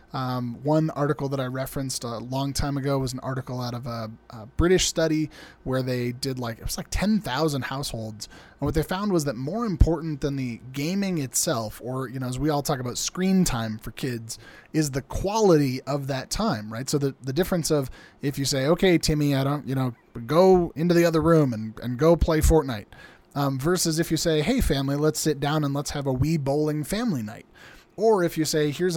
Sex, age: male, 20-39